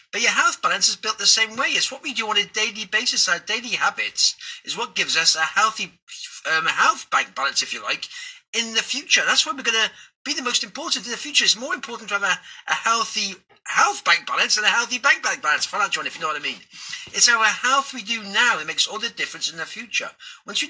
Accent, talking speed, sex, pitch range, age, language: British, 250 wpm, male, 205-270 Hz, 40-59, English